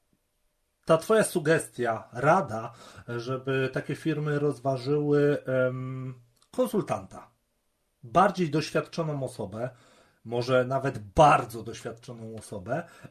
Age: 40-59